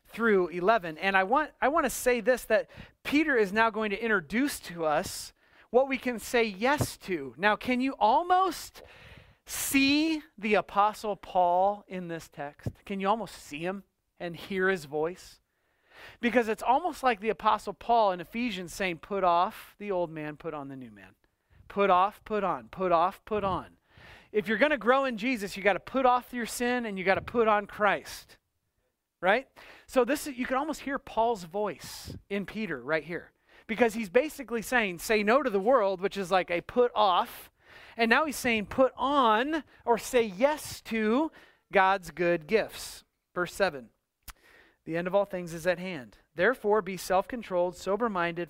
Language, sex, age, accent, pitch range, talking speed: English, male, 40-59, American, 180-245 Hz, 185 wpm